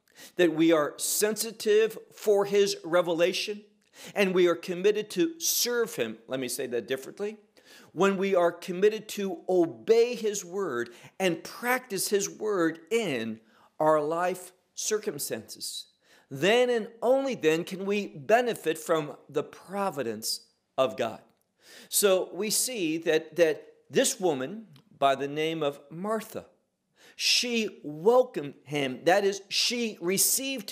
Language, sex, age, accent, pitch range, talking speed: English, male, 50-69, American, 155-220 Hz, 130 wpm